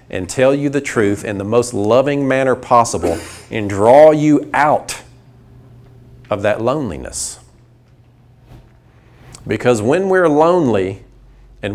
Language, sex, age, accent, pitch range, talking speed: English, male, 40-59, American, 115-140 Hz, 115 wpm